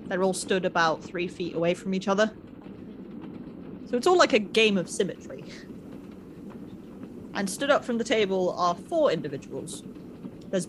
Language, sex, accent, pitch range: English, female, British, 175-225 Hz